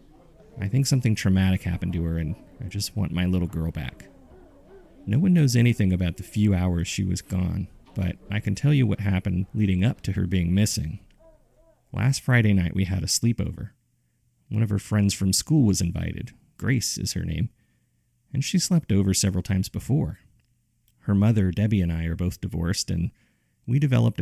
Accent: American